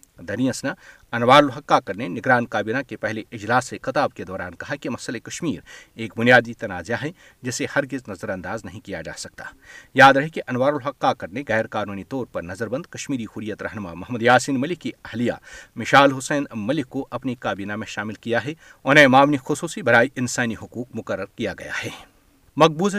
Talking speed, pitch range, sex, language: 185 wpm, 110-145 Hz, male, Urdu